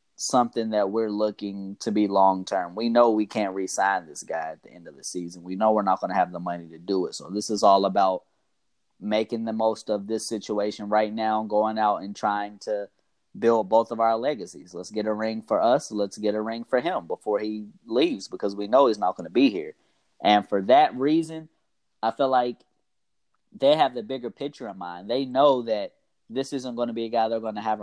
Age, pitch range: 20-39, 100-115 Hz